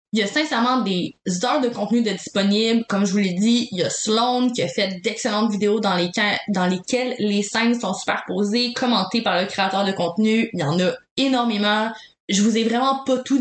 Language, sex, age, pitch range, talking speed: French, female, 20-39, 195-235 Hz, 220 wpm